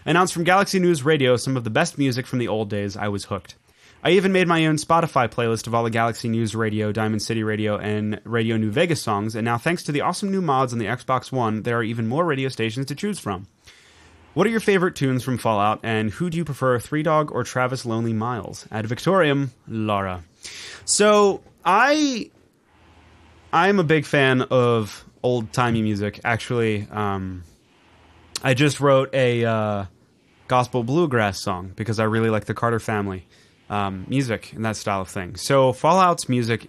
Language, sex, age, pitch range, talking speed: English, male, 20-39, 105-140 Hz, 190 wpm